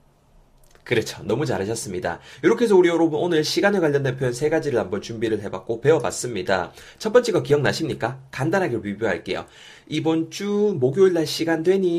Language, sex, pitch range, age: Korean, male, 115-170 Hz, 30-49